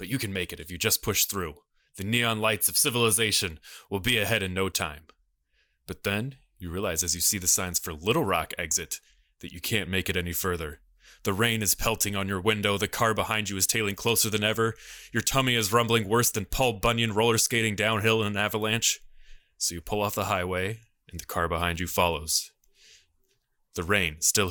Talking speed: 210 wpm